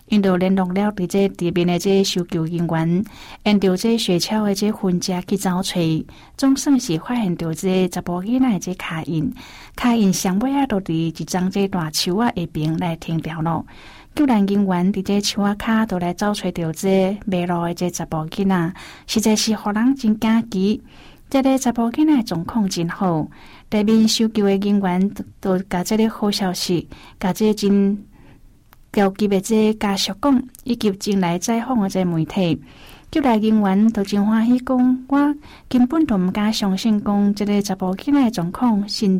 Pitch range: 180-220 Hz